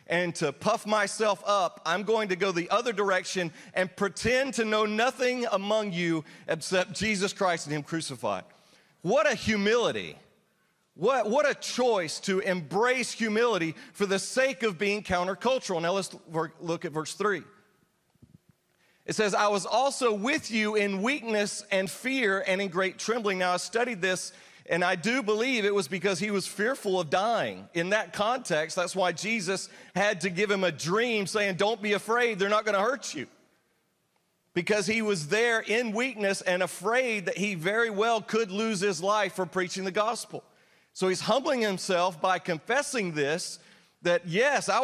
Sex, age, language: male, 40-59, English